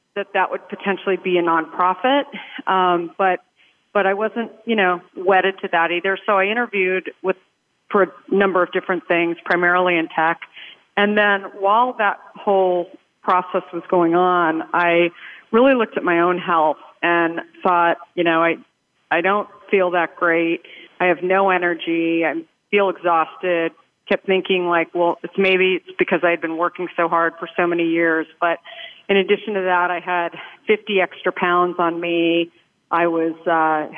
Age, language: 40-59, English